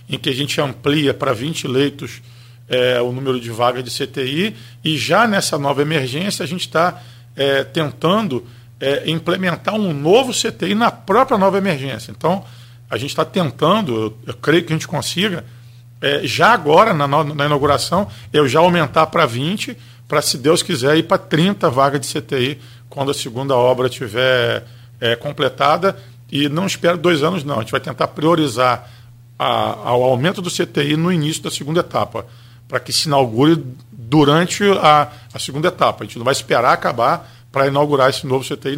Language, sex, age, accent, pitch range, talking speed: Portuguese, male, 40-59, Brazilian, 125-165 Hz, 180 wpm